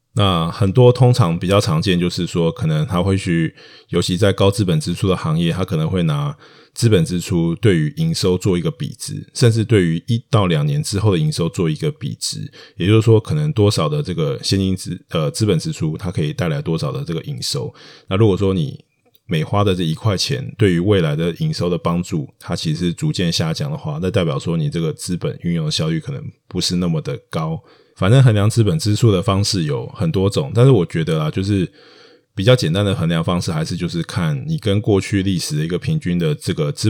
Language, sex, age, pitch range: Chinese, male, 20-39, 100-155 Hz